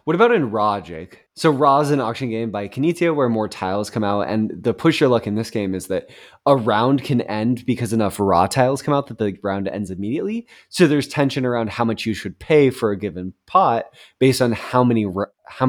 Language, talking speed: English, 235 wpm